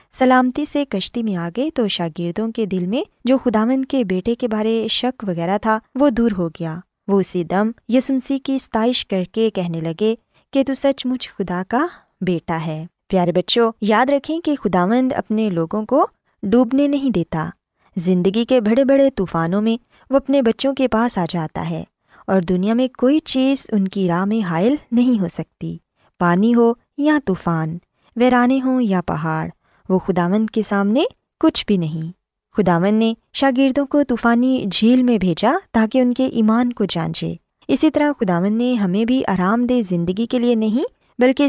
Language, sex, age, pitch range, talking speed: Urdu, female, 20-39, 185-255 Hz, 175 wpm